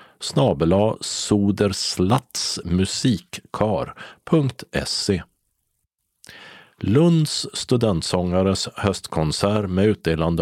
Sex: male